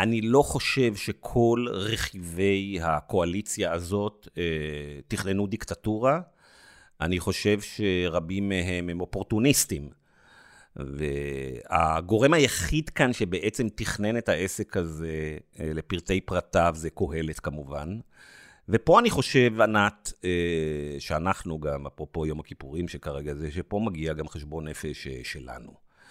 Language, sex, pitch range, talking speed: Hebrew, male, 80-100 Hz, 105 wpm